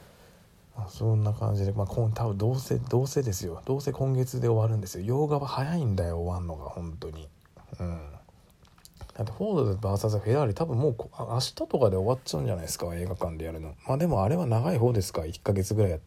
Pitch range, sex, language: 90-125 Hz, male, Japanese